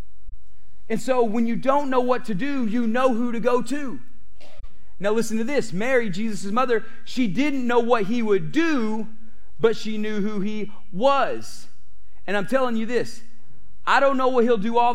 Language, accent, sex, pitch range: English, American, male, 210-250 Hz